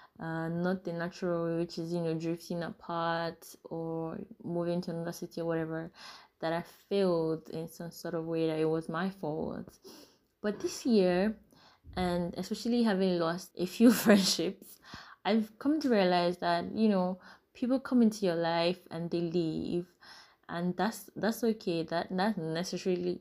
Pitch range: 170-200 Hz